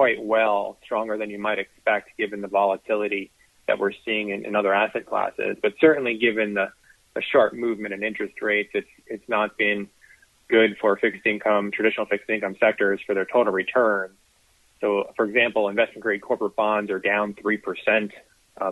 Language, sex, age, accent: English, male, 30-49, American